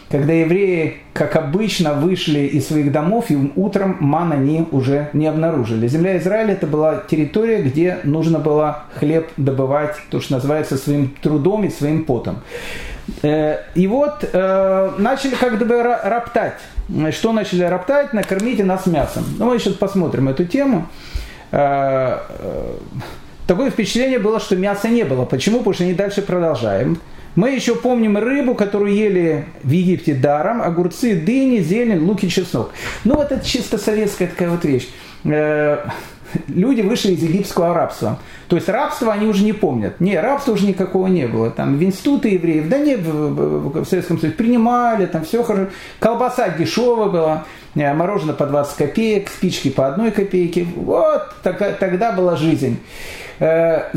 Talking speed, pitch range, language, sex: 145 wpm, 155-220 Hz, Russian, male